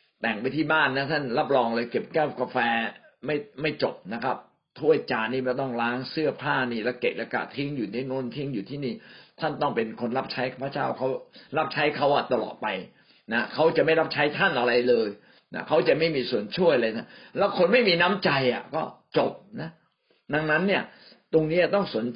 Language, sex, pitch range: Thai, male, 125-190 Hz